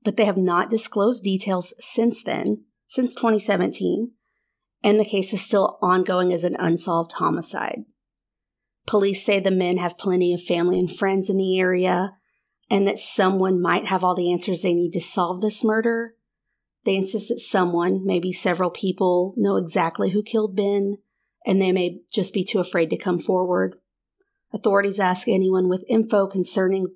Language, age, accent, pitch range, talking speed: English, 40-59, American, 185-215 Hz, 165 wpm